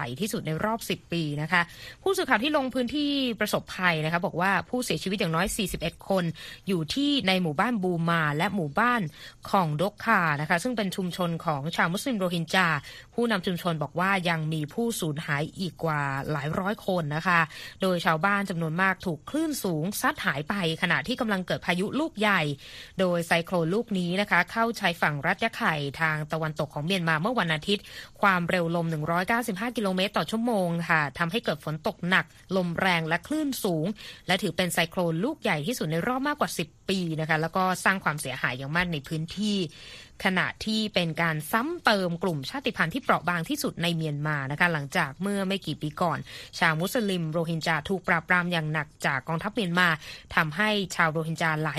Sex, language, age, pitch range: female, Thai, 20-39, 160-205 Hz